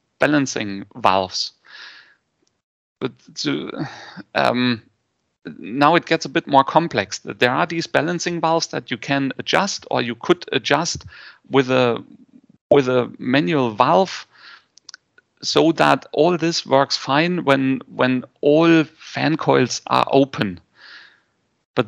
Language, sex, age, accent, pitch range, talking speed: English, male, 40-59, German, 115-150 Hz, 125 wpm